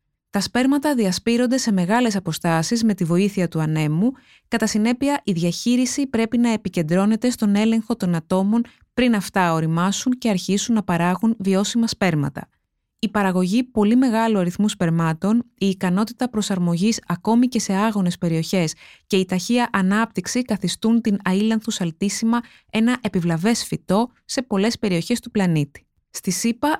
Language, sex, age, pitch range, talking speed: Greek, female, 20-39, 185-235 Hz, 140 wpm